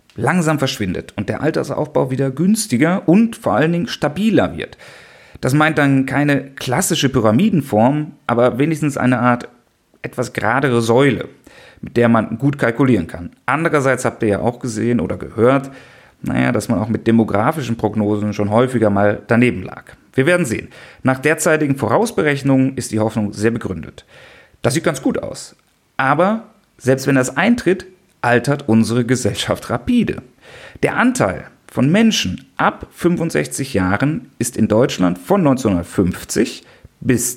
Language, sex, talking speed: German, male, 145 wpm